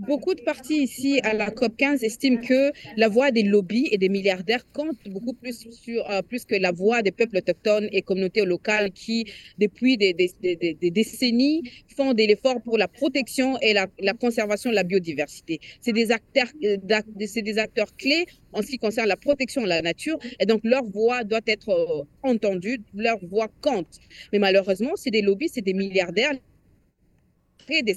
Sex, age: female, 40-59